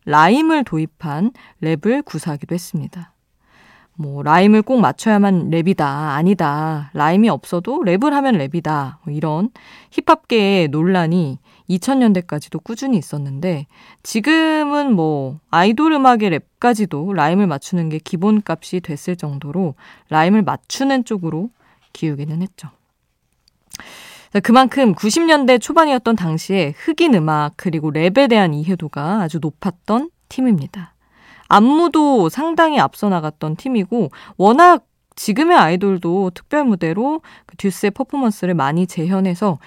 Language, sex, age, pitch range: Korean, female, 20-39, 155-230 Hz